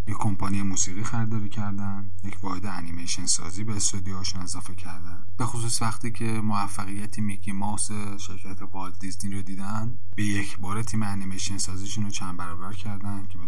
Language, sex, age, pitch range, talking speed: Persian, male, 30-49, 90-105 Hz, 155 wpm